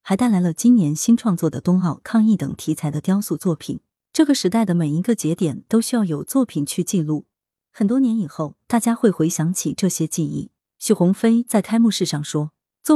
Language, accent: Chinese, native